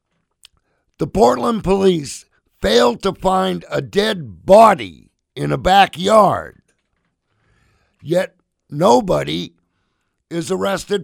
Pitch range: 125-205 Hz